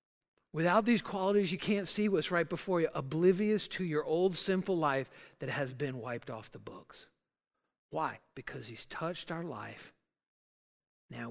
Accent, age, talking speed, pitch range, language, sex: American, 50-69, 160 wpm, 120-160 Hz, English, male